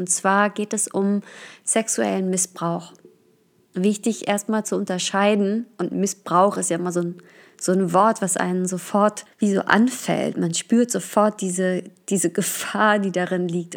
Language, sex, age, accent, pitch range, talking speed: German, female, 20-39, German, 185-210 Hz, 155 wpm